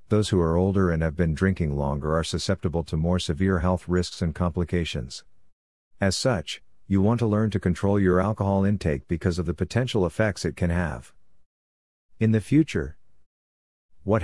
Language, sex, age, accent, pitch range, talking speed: English, male, 50-69, American, 85-100 Hz, 175 wpm